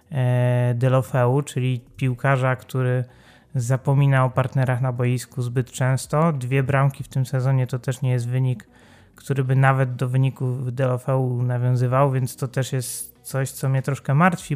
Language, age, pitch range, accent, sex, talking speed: Polish, 30-49, 130-145 Hz, native, male, 155 wpm